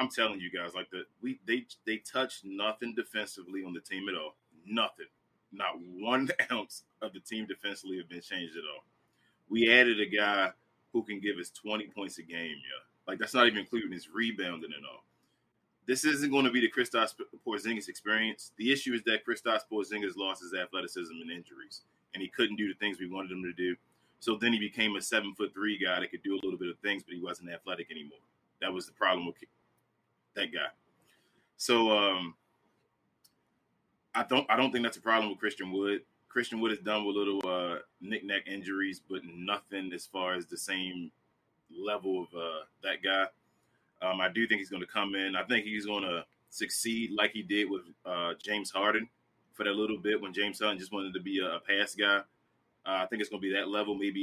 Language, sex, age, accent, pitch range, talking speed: English, male, 20-39, American, 95-110 Hz, 215 wpm